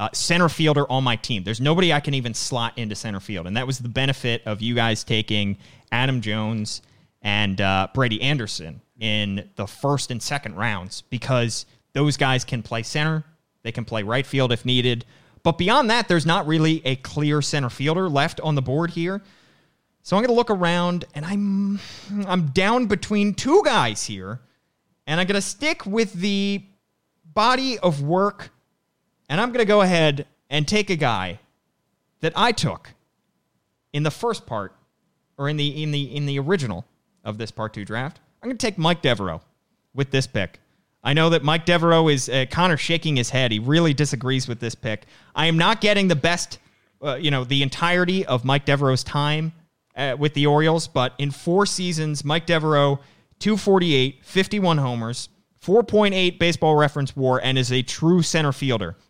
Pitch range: 120-170 Hz